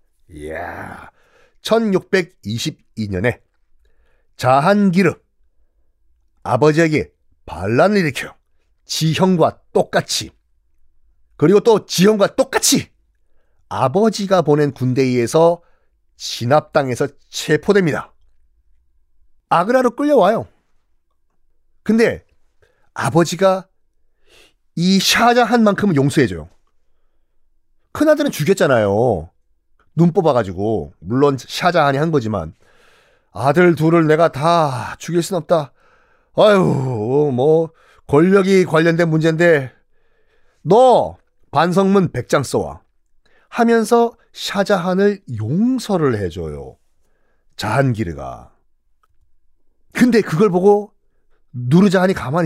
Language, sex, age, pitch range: Korean, male, 40-59, 120-200 Hz